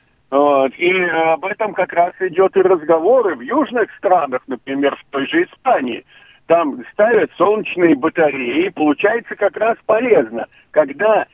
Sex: male